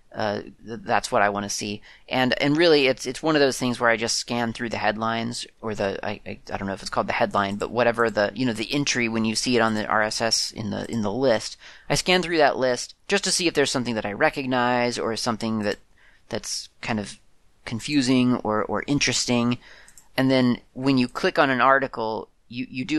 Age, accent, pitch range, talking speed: 30-49, American, 105-135 Hz, 230 wpm